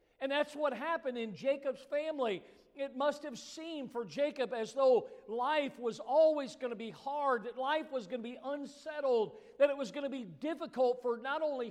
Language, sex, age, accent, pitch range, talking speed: English, male, 50-69, American, 210-275 Hz, 200 wpm